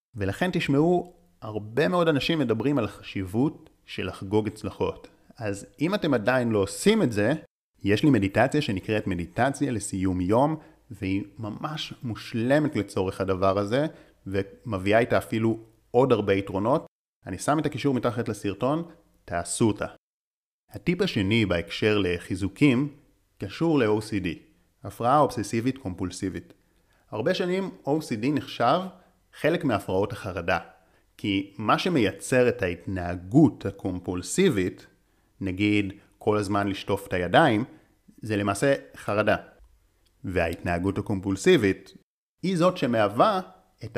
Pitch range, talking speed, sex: 95-130 Hz, 115 wpm, male